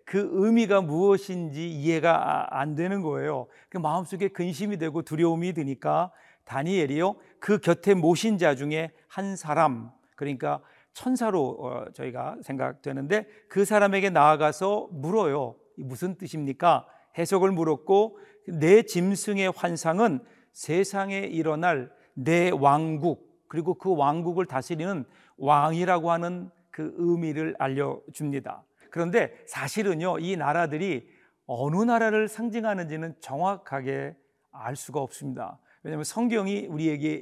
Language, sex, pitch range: Korean, male, 155-205 Hz